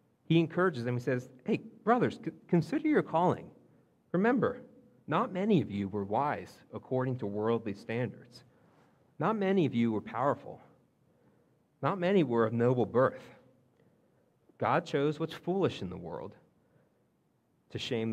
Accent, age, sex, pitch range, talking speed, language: American, 40-59, male, 110-150 Hz, 140 wpm, English